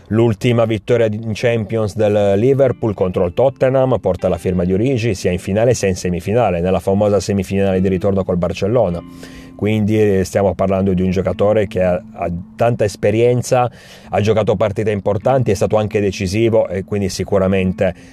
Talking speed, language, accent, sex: 160 wpm, Italian, native, male